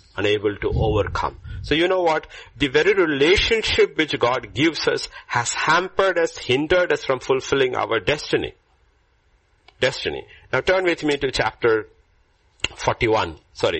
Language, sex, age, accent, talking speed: English, male, 50-69, Indian, 140 wpm